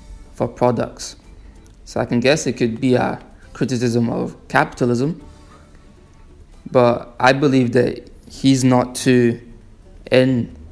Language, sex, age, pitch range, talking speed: English, male, 20-39, 115-125 Hz, 120 wpm